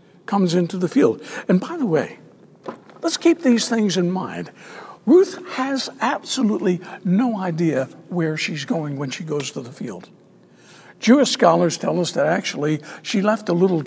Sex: male